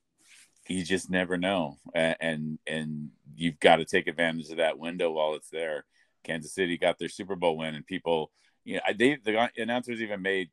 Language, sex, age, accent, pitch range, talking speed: English, male, 40-59, American, 85-105 Hz, 190 wpm